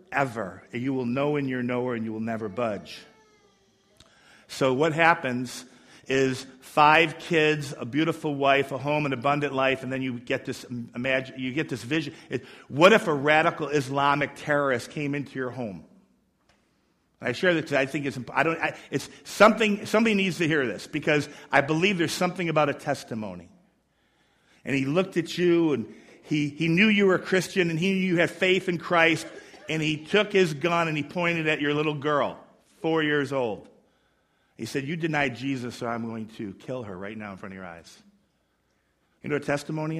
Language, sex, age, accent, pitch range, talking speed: English, male, 50-69, American, 120-160 Hz, 195 wpm